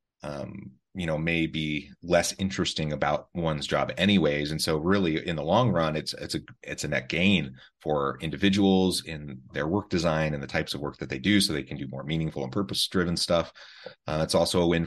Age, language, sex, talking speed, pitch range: 30-49, English, male, 215 wpm, 70-85 Hz